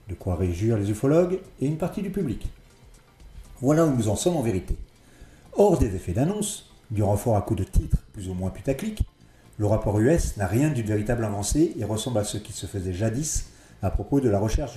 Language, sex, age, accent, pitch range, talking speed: French, male, 40-59, French, 100-130 Hz, 210 wpm